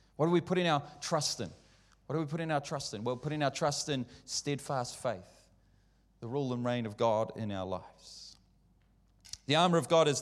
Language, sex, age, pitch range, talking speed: English, male, 30-49, 110-145 Hz, 205 wpm